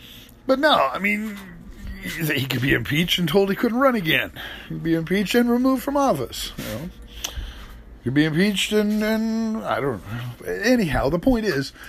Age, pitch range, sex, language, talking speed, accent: 50-69, 130-180 Hz, male, English, 185 wpm, American